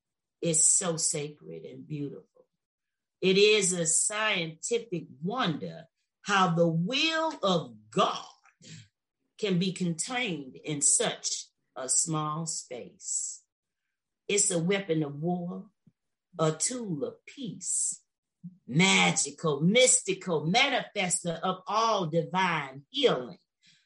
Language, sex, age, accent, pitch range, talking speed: English, female, 40-59, American, 165-230 Hz, 100 wpm